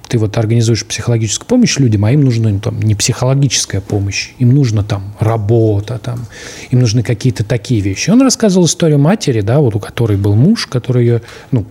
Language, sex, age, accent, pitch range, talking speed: Russian, male, 30-49, native, 110-145 Hz, 195 wpm